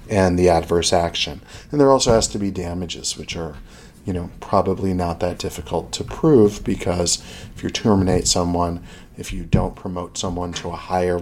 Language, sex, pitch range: English, male, 90-105 Hz